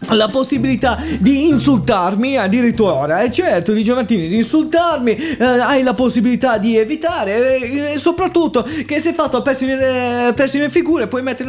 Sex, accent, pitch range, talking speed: male, Italian, 200-265 Hz, 160 wpm